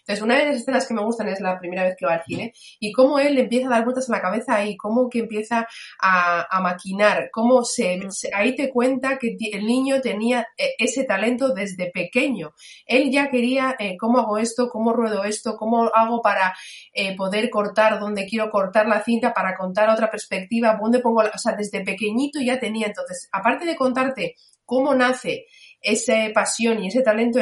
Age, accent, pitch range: 30-49, Spanish, 200-255 Hz